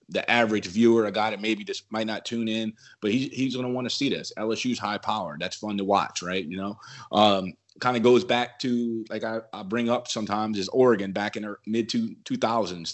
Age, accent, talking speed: 30-49, American, 240 wpm